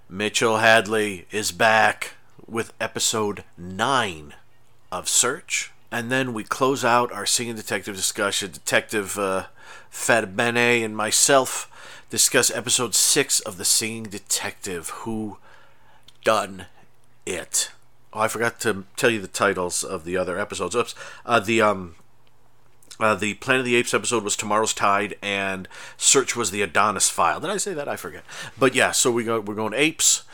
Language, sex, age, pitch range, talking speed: English, male, 40-59, 100-115 Hz, 160 wpm